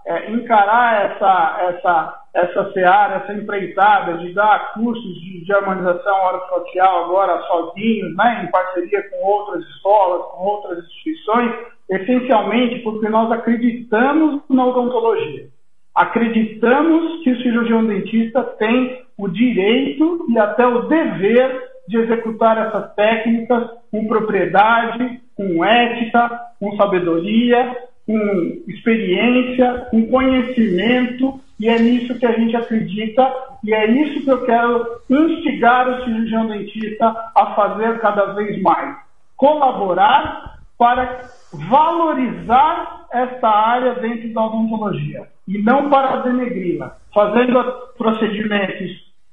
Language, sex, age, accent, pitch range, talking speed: Portuguese, male, 50-69, Brazilian, 200-250 Hz, 115 wpm